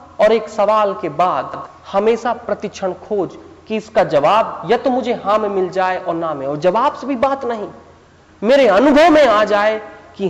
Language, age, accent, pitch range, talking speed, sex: Hindi, 40-59, native, 165-225 Hz, 190 wpm, male